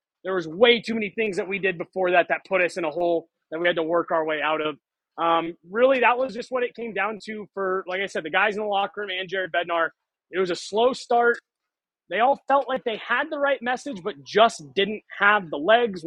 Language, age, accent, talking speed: English, 20-39, American, 260 wpm